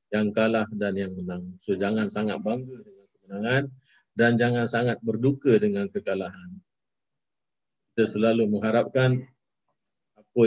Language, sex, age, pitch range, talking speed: Malay, male, 50-69, 105-125 Hz, 125 wpm